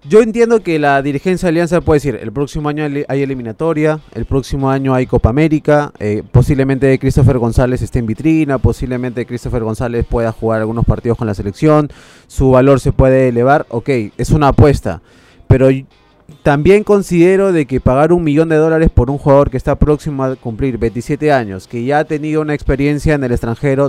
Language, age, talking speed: Spanish, 20-39, 185 wpm